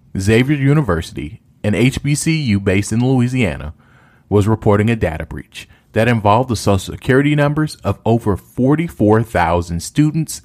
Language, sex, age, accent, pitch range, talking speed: English, male, 40-59, American, 95-130 Hz, 125 wpm